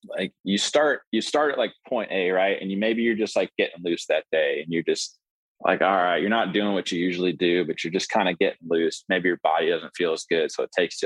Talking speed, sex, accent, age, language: 275 wpm, male, American, 20-39, English